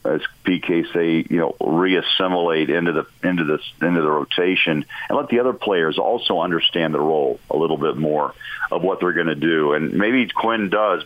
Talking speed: 195 wpm